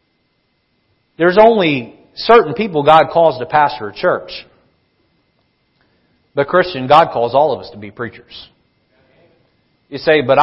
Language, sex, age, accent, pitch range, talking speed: English, male, 40-59, American, 135-185 Hz, 130 wpm